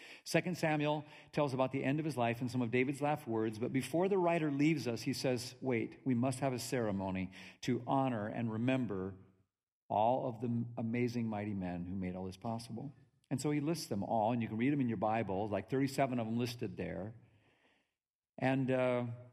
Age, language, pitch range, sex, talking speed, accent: 50-69, English, 110-145 Hz, male, 200 wpm, American